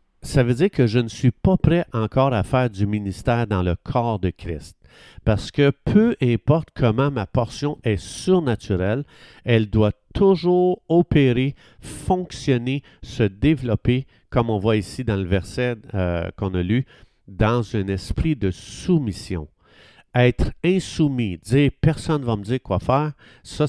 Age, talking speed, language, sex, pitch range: 50-69, 155 wpm, French, male, 100-135 Hz